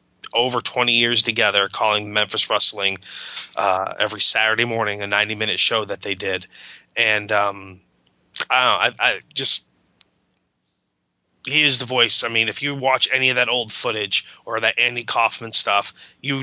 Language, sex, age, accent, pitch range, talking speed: English, male, 20-39, American, 95-120 Hz, 160 wpm